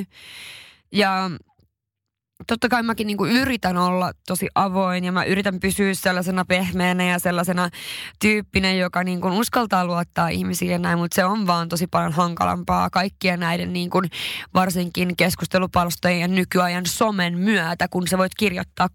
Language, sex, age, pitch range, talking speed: Finnish, female, 20-39, 175-200 Hz, 145 wpm